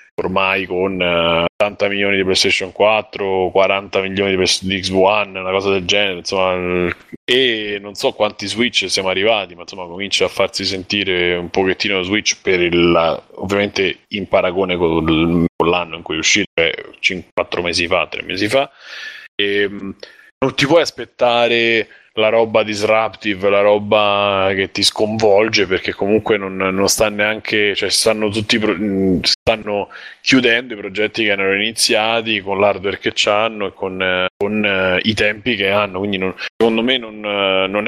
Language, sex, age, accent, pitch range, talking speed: Italian, male, 20-39, native, 95-110 Hz, 160 wpm